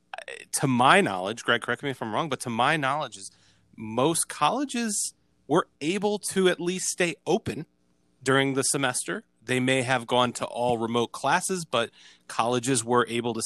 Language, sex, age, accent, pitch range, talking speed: English, male, 30-49, American, 105-135 Hz, 175 wpm